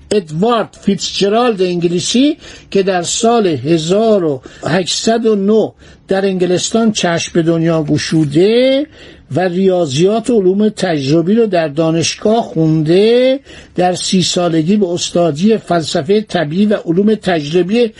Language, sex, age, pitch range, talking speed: Persian, male, 60-79, 175-225 Hz, 105 wpm